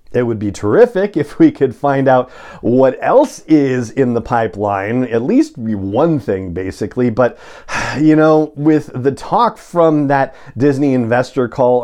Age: 40-59